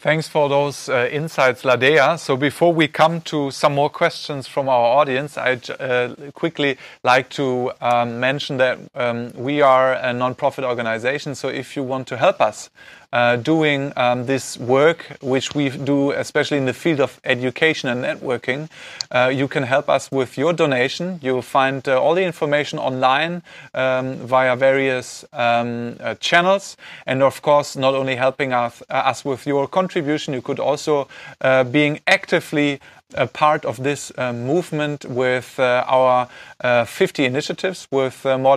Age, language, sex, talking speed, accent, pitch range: 30-49, German, male, 170 wpm, German, 125-150 Hz